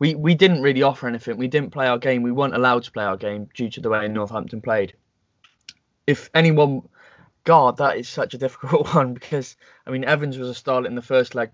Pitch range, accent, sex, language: 120-150 Hz, British, male, English